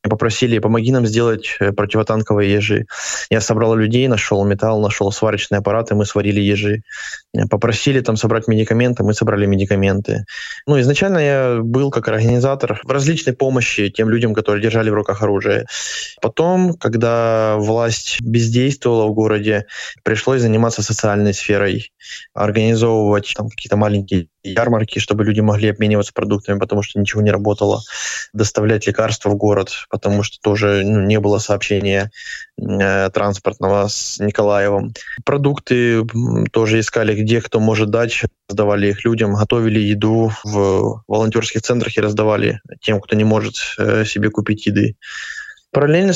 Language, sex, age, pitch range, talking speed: Russian, male, 20-39, 105-115 Hz, 140 wpm